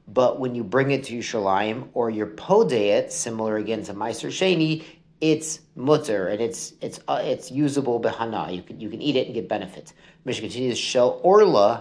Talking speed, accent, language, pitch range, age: 185 wpm, American, English, 110-150 Hz, 40-59